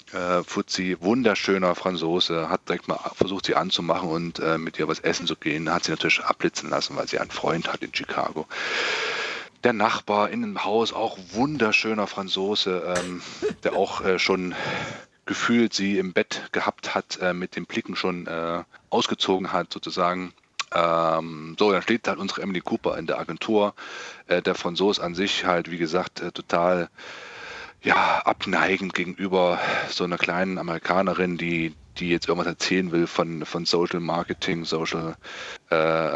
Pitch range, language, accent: 85-95 Hz, German, German